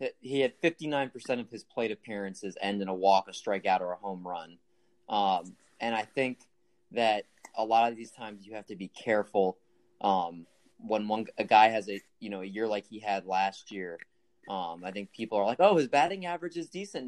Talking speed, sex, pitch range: 210 wpm, male, 100-120 Hz